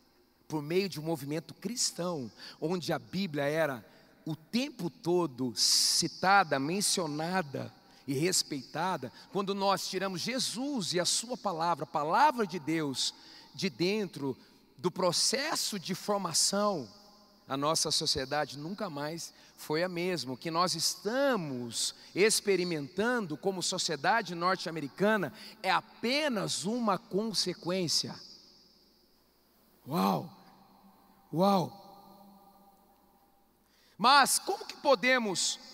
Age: 40-59